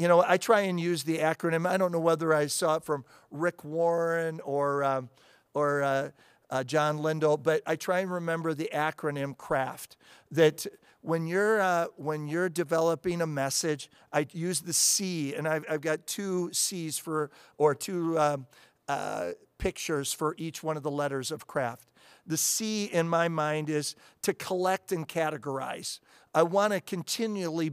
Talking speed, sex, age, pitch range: 175 wpm, male, 50-69, 150-175 Hz